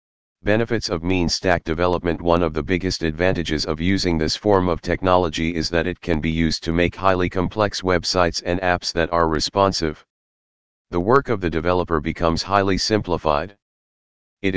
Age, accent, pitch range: 40-59, American, 80-100 Hz